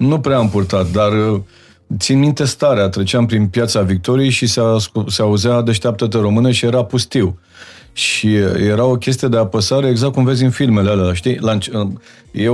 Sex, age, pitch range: male, 40-59, 100-125 Hz